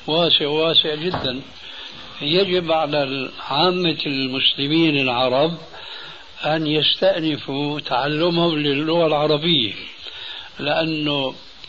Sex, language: male, Arabic